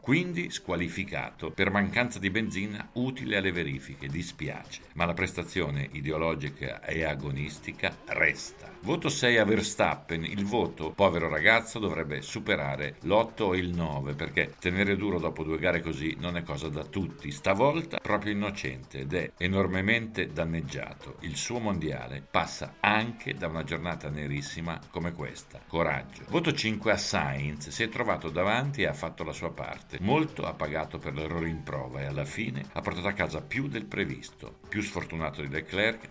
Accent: native